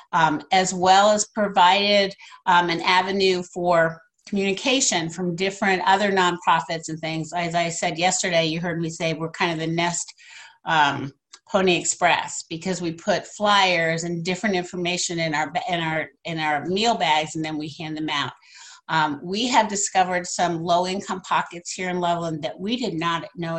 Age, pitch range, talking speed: 50-69, 165-205 Hz, 175 wpm